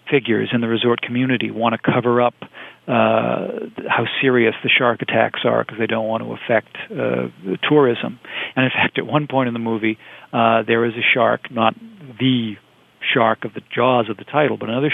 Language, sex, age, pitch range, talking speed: English, male, 50-69, 115-130 Hz, 200 wpm